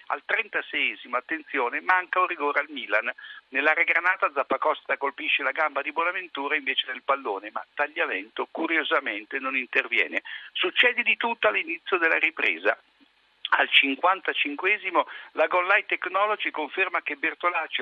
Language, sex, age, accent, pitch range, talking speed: Italian, male, 60-79, native, 145-215 Hz, 130 wpm